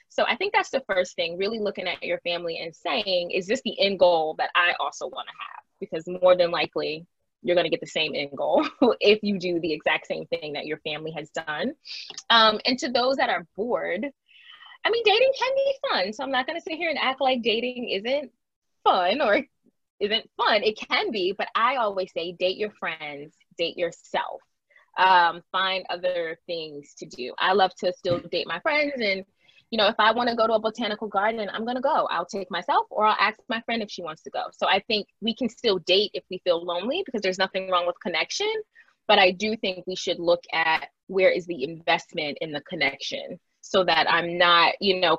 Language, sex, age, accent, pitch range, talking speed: English, female, 20-39, American, 175-235 Hz, 225 wpm